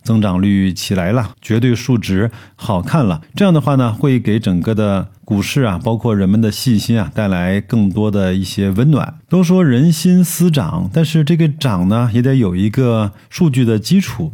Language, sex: Chinese, male